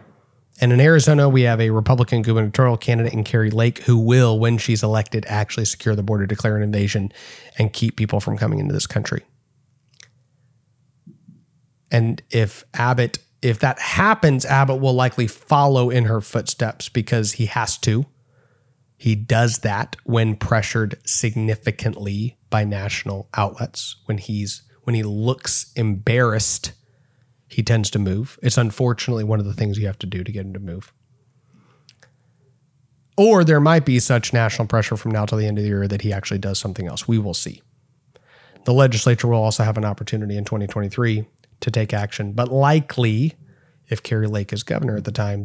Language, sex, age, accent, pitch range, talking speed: English, male, 30-49, American, 110-130 Hz, 170 wpm